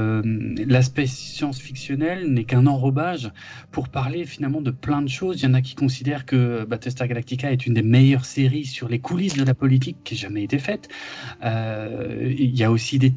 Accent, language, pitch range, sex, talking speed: French, French, 125-150 Hz, male, 195 wpm